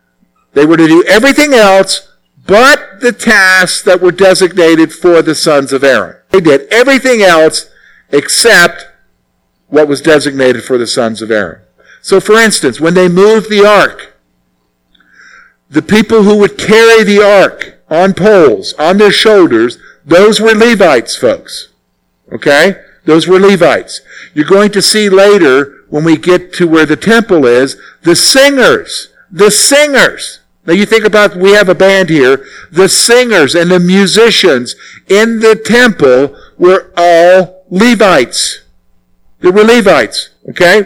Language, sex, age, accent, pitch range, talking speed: English, male, 50-69, American, 140-210 Hz, 145 wpm